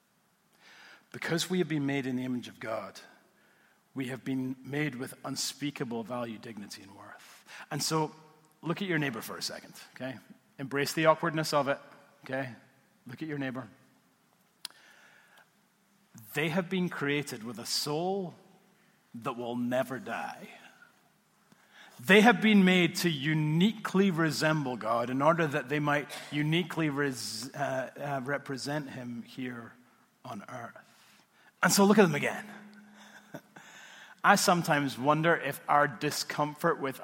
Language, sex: English, male